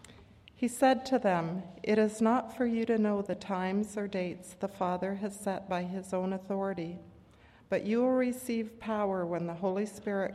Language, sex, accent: English, female, American